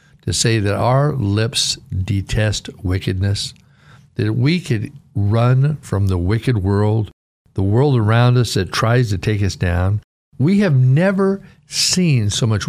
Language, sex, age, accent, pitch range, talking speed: English, male, 60-79, American, 100-130 Hz, 145 wpm